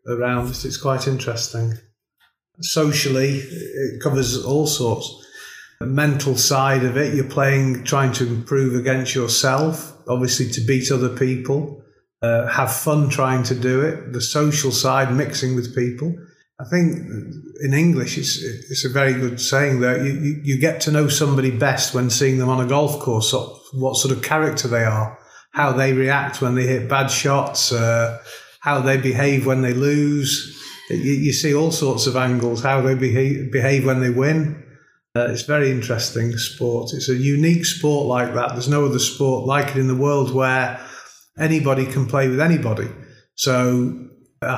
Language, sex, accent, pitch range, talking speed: Turkish, male, British, 125-140 Hz, 175 wpm